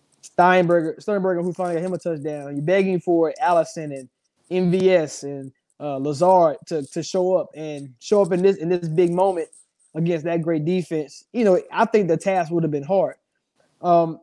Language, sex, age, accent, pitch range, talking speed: English, male, 20-39, American, 160-200 Hz, 190 wpm